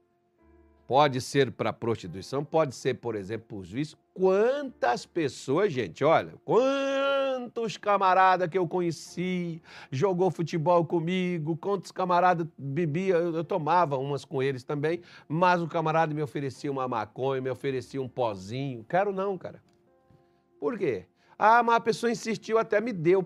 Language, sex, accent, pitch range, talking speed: Portuguese, male, Brazilian, 120-190 Hz, 145 wpm